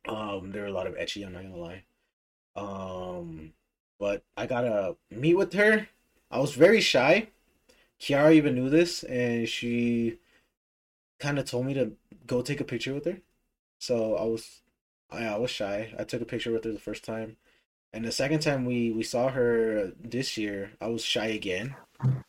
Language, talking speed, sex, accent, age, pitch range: English, 190 wpm, male, American, 20-39, 100-120 Hz